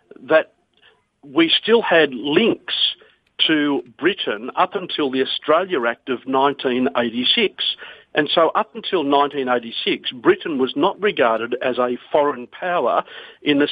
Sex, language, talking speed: male, English, 125 wpm